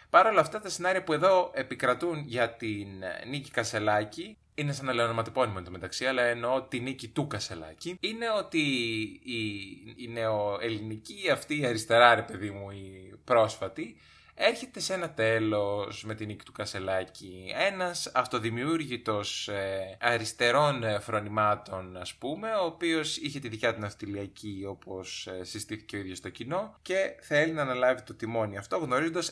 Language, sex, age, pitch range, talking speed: Greek, male, 20-39, 105-155 Hz, 155 wpm